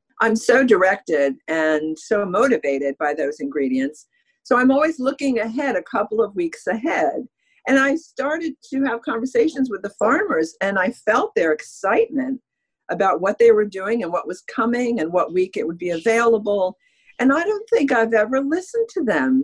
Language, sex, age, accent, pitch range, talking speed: English, female, 50-69, American, 160-260 Hz, 180 wpm